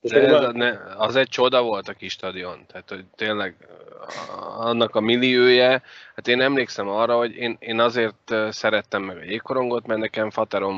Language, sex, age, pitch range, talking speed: Hungarian, male, 20-39, 105-130 Hz, 155 wpm